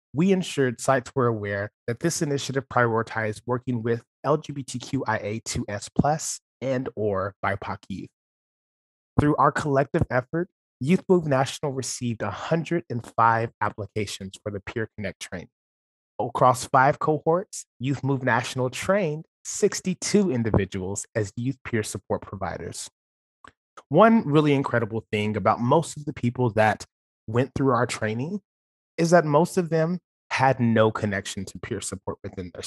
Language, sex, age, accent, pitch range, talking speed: English, male, 30-49, American, 105-140 Hz, 130 wpm